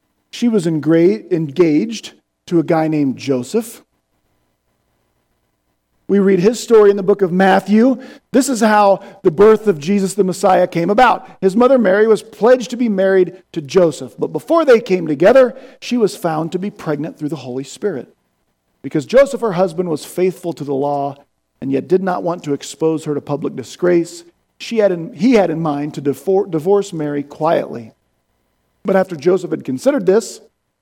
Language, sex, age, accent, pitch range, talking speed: English, male, 40-59, American, 130-200 Hz, 170 wpm